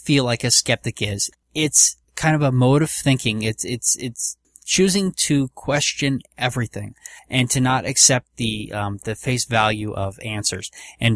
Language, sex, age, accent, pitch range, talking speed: English, male, 20-39, American, 110-130 Hz, 165 wpm